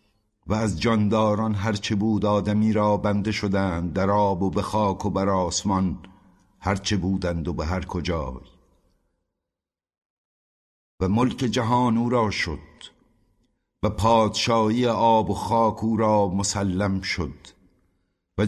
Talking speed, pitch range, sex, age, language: 125 wpm, 95-115 Hz, male, 60-79, Persian